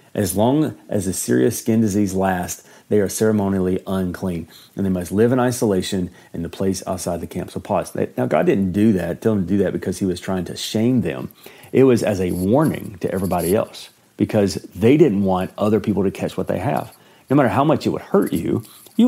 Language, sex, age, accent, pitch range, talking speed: English, male, 40-59, American, 90-115 Hz, 230 wpm